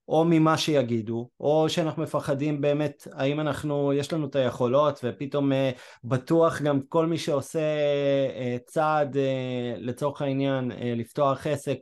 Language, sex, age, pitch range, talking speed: Hebrew, male, 30-49, 125-155 Hz, 140 wpm